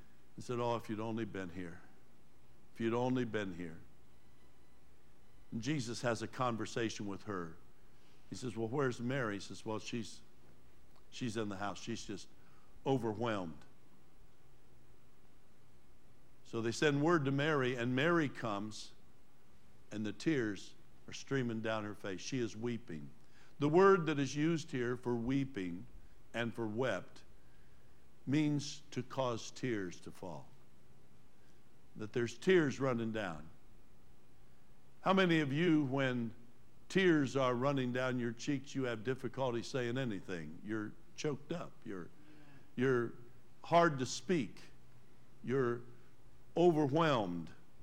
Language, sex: English, male